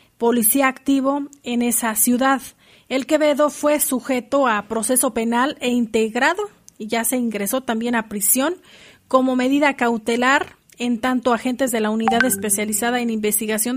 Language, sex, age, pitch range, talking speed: Spanish, female, 40-59, 230-270 Hz, 145 wpm